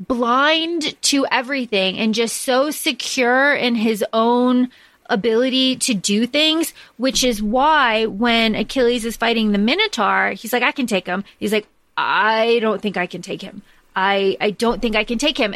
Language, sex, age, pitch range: English, female, 20-39, 215-270 Hz